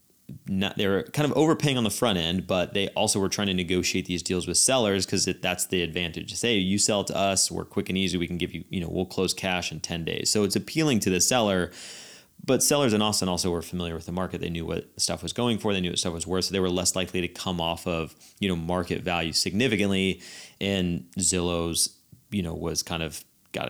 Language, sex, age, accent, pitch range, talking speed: English, male, 30-49, American, 85-105 Hz, 250 wpm